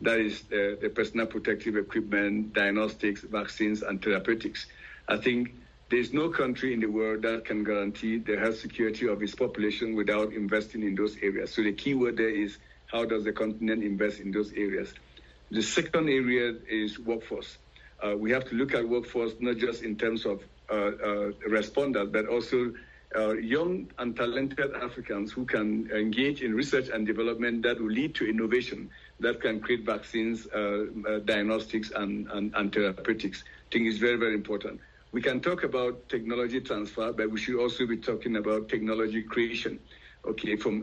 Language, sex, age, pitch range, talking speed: English, male, 60-79, 105-120 Hz, 175 wpm